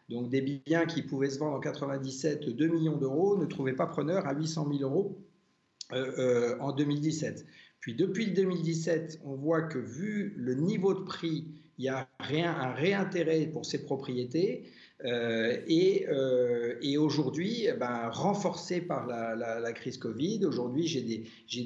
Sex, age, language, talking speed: male, 50-69, French, 170 wpm